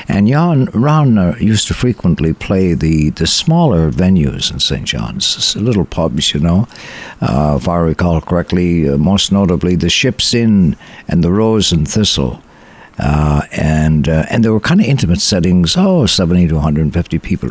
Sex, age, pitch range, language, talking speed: male, 60-79, 85-120 Hz, English, 170 wpm